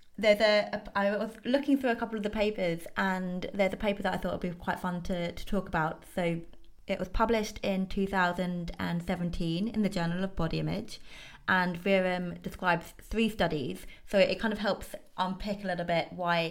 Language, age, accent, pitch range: English, 20-39, British, 175-200 Hz